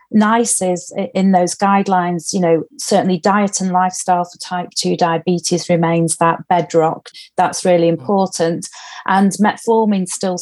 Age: 40-59